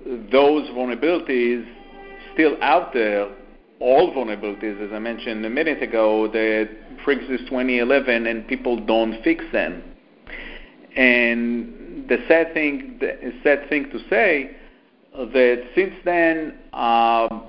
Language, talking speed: English, 115 wpm